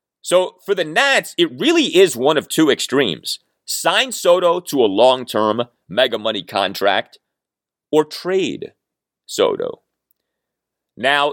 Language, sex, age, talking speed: English, male, 30-49, 115 wpm